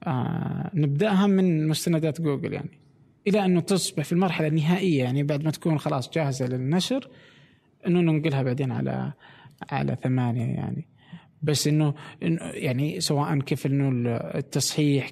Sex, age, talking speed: male, 20-39, 130 wpm